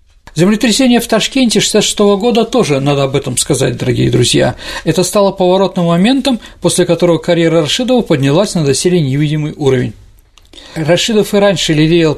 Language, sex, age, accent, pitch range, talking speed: Russian, male, 40-59, native, 140-190 Hz, 145 wpm